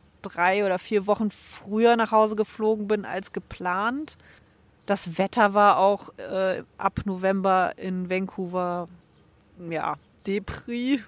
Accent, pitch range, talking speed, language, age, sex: German, 180-210 Hz, 120 wpm, German, 30-49, female